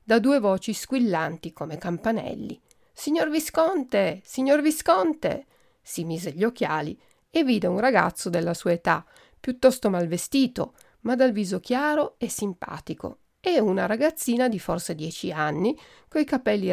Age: 40-59